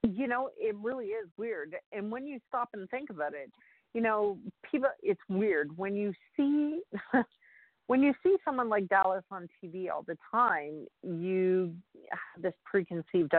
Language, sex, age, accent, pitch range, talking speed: English, female, 50-69, American, 185-250 Hz, 170 wpm